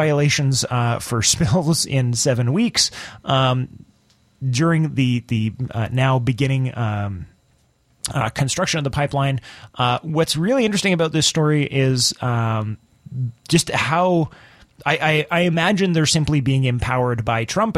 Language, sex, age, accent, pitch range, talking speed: English, male, 30-49, American, 115-150 Hz, 140 wpm